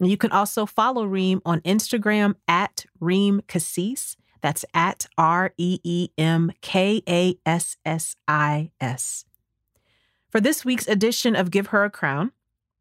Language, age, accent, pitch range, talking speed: English, 30-49, American, 150-190 Hz, 105 wpm